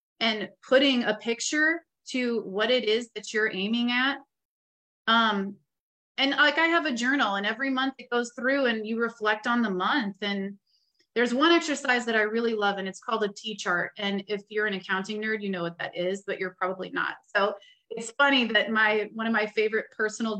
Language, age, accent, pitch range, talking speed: English, 30-49, American, 205-240 Hz, 205 wpm